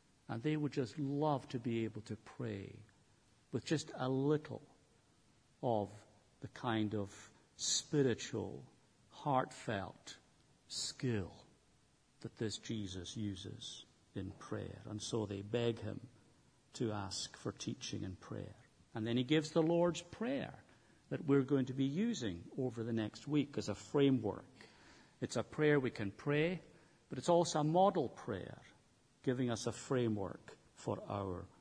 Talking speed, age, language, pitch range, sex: 145 wpm, 50-69, English, 105-140 Hz, male